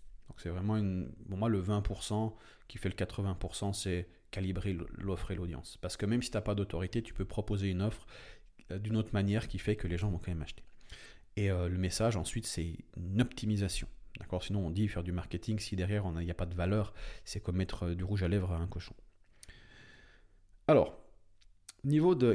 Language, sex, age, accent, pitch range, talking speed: French, male, 40-59, French, 90-115 Hz, 210 wpm